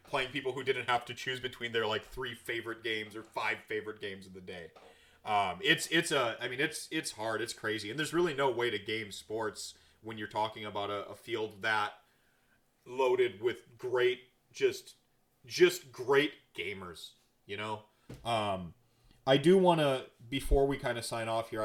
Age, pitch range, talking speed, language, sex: 30-49, 110-140 Hz, 190 wpm, English, male